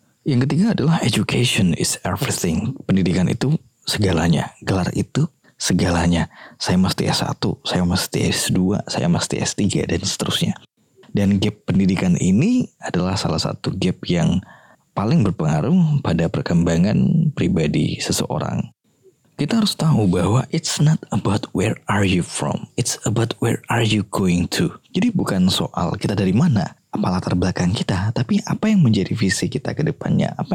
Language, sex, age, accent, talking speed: Indonesian, male, 20-39, native, 145 wpm